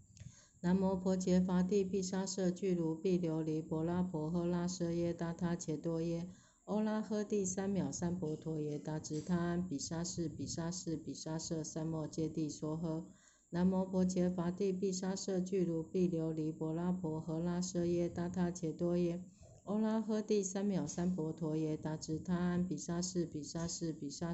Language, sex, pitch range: Chinese, female, 160-180 Hz